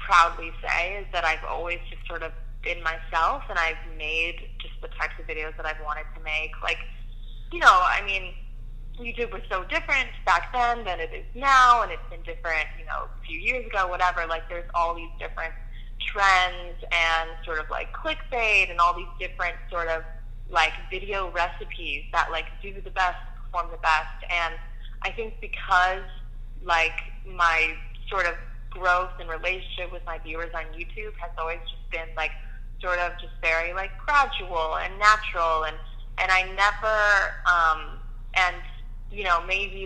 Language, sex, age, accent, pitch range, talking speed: English, female, 20-39, American, 155-185 Hz, 175 wpm